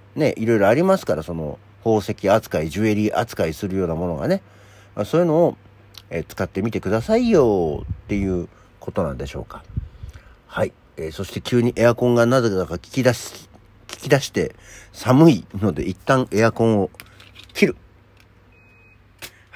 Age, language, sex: 50-69, Japanese, male